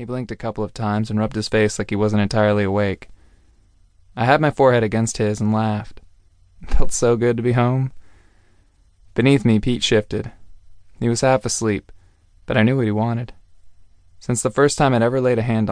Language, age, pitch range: English, 20-39, 95-115 Hz